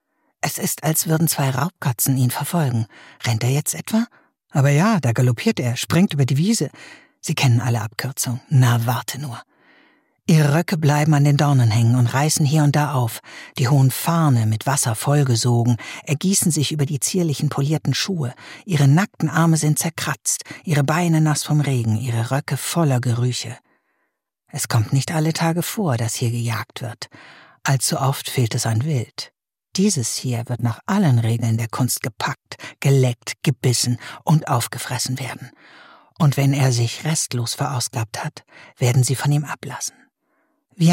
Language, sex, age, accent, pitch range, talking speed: German, female, 60-79, German, 125-160 Hz, 165 wpm